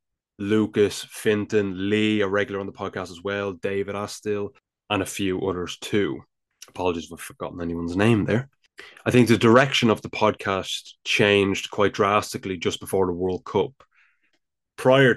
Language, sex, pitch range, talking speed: English, male, 95-110 Hz, 160 wpm